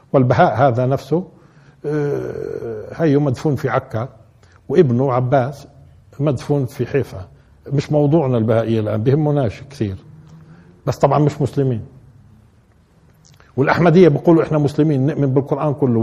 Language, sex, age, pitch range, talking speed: Arabic, male, 50-69, 125-155 Hz, 110 wpm